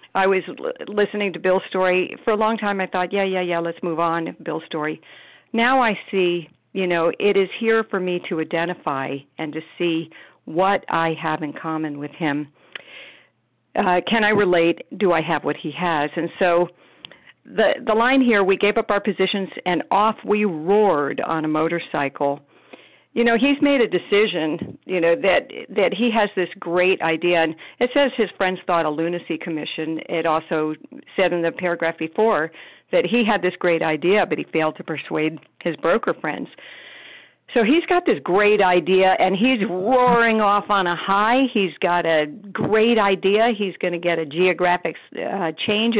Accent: American